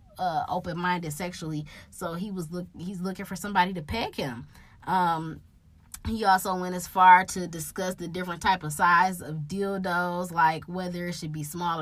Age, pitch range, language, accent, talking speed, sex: 20-39, 155-235 Hz, English, American, 180 wpm, female